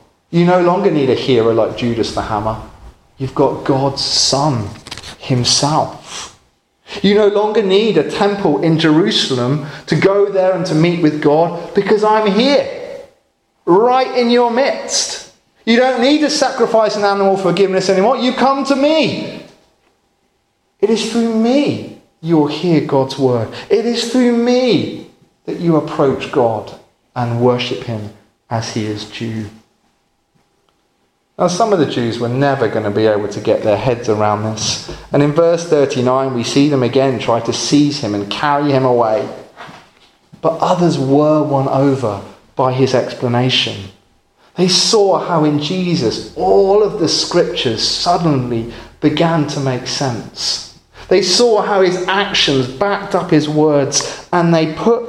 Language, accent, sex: English, British, male